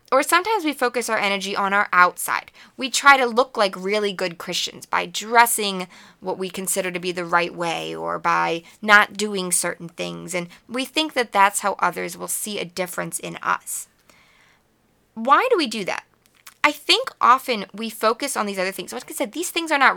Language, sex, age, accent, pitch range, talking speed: English, female, 20-39, American, 190-260 Hz, 200 wpm